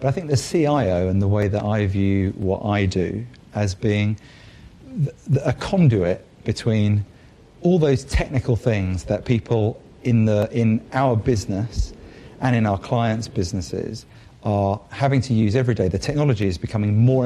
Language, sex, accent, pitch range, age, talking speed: English, male, British, 100-125 Hz, 40-59, 155 wpm